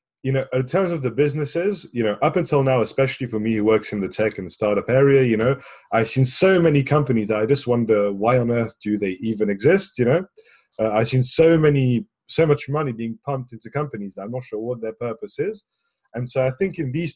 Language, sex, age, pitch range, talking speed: English, male, 30-49, 115-150 Hz, 240 wpm